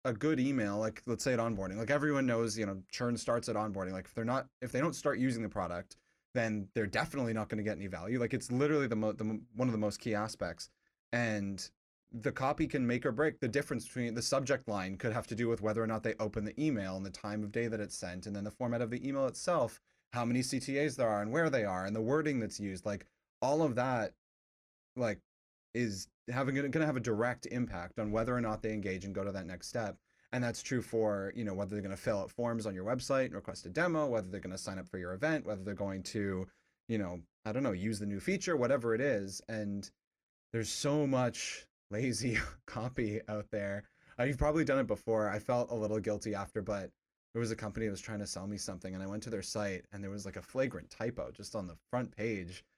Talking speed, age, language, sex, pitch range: 255 wpm, 30-49, English, male, 100-125 Hz